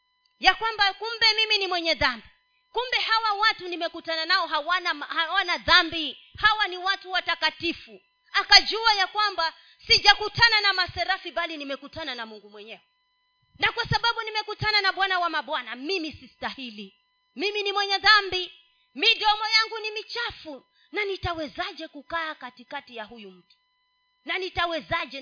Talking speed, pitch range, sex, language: 135 wpm, 310-430 Hz, female, Swahili